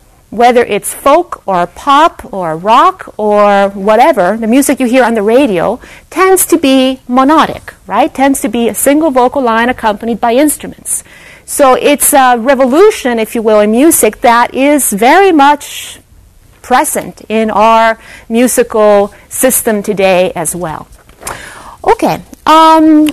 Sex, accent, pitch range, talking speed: female, American, 230-305 Hz, 140 wpm